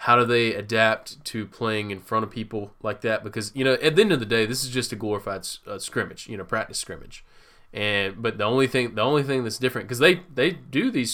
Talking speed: 255 wpm